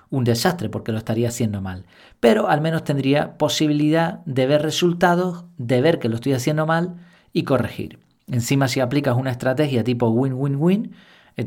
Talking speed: 165 wpm